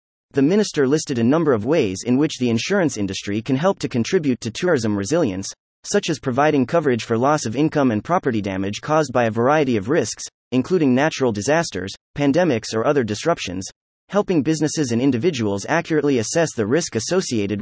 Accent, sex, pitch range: American, male, 105-150 Hz